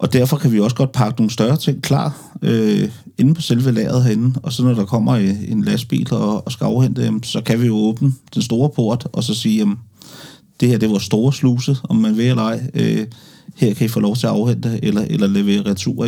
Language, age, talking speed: Danish, 30-49, 240 wpm